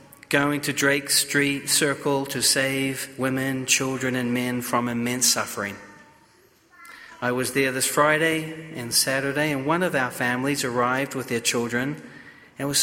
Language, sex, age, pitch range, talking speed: English, male, 40-59, 135-165 Hz, 155 wpm